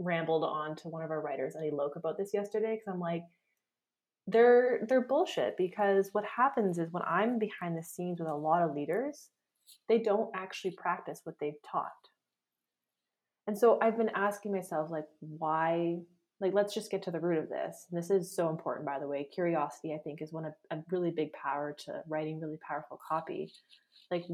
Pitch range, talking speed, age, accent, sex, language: 160-195 Hz, 195 wpm, 20-39, American, female, English